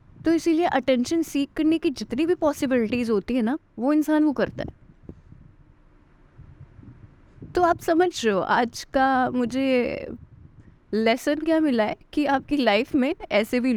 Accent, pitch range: native, 220-305 Hz